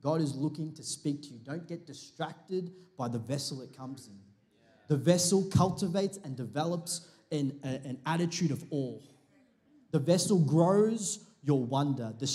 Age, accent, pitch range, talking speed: 30-49, Australian, 135-170 Hz, 160 wpm